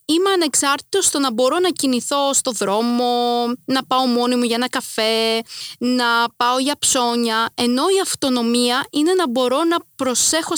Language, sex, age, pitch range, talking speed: Greek, female, 20-39, 230-290 Hz, 160 wpm